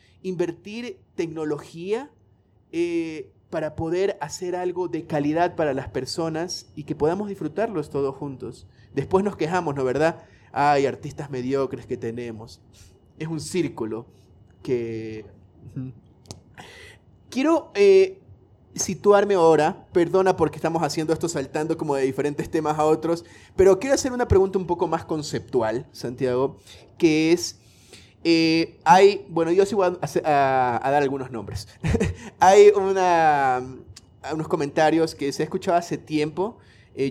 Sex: male